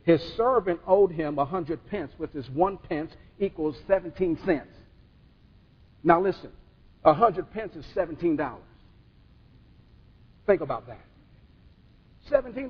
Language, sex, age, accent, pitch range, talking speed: English, male, 50-69, American, 150-200 Hz, 125 wpm